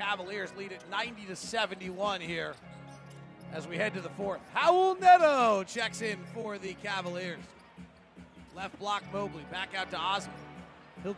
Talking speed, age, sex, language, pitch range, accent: 150 wpm, 40-59, male, English, 175-215 Hz, American